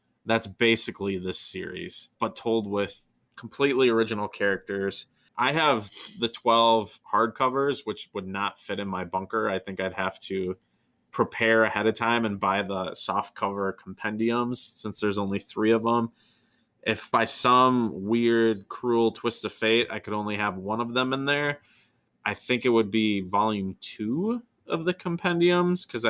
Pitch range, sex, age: 100-120 Hz, male, 20-39